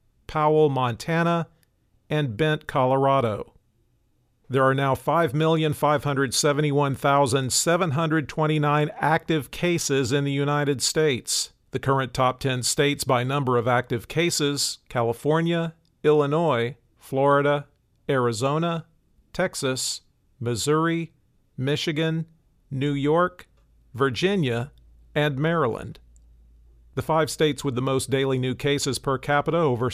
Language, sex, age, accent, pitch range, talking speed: English, male, 50-69, American, 125-155 Hz, 100 wpm